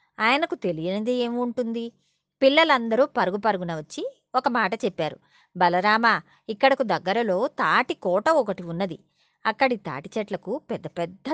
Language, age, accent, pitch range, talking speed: Telugu, 20-39, native, 180-255 Hz, 115 wpm